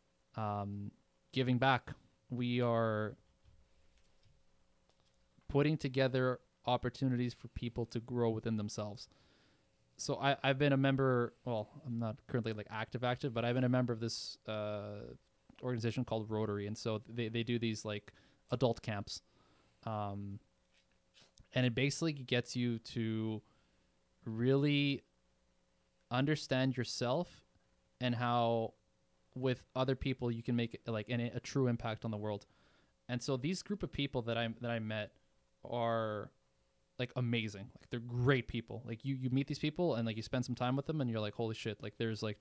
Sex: male